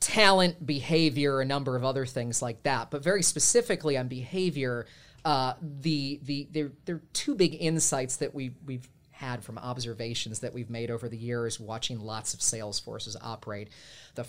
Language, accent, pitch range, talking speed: English, American, 115-145 Hz, 175 wpm